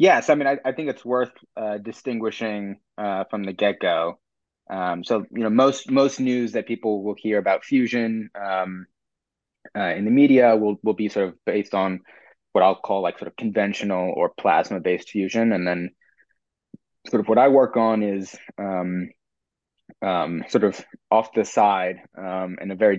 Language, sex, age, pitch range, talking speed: English, male, 20-39, 95-115 Hz, 180 wpm